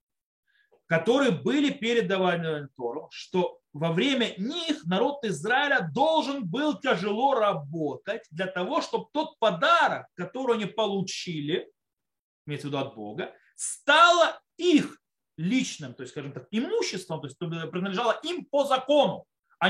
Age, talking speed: 30-49, 130 wpm